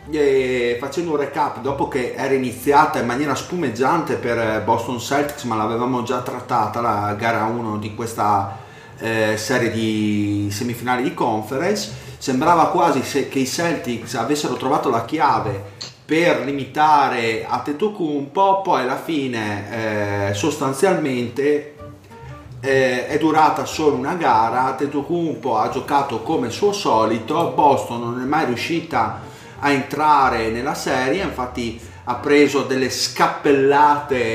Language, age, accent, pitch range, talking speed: Italian, 30-49, native, 115-145 Hz, 130 wpm